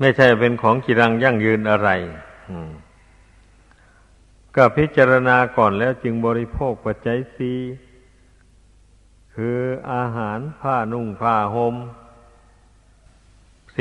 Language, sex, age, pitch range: Thai, male, 60-79, 105-125 Hz